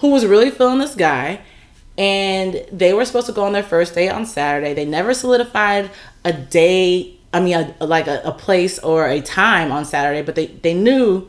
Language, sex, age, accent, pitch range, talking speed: English, female, 30-49, American, 165-245 Hz, 205 wpm